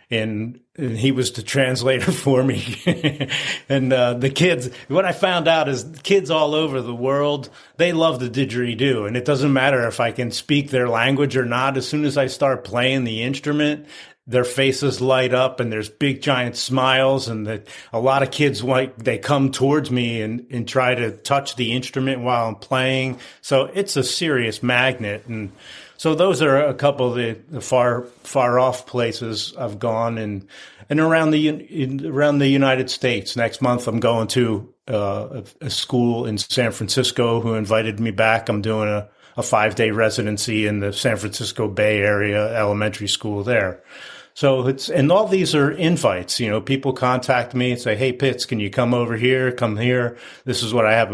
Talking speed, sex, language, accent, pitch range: 190 wpm, male, English, American, 115-135 Hz